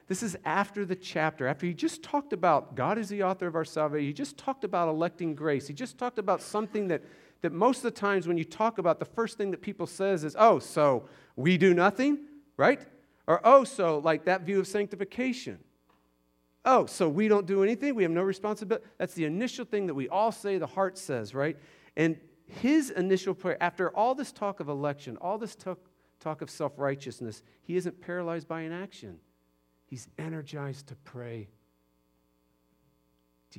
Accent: American